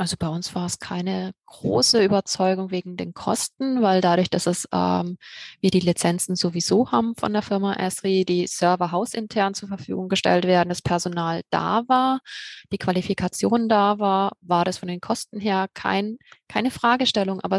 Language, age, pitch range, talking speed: German, 20-39, 185-230 Hz, 170 wpm